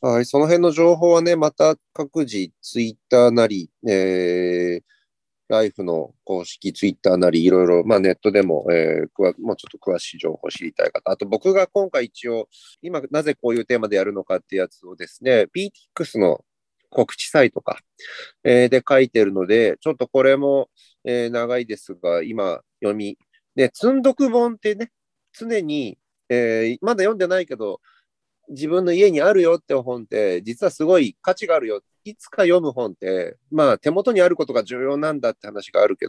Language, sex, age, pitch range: Japanese, male, 40-59, 115-185 Hz